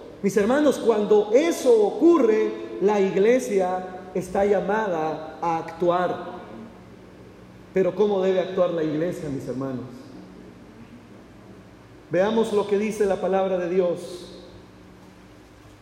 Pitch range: 175-225 Hz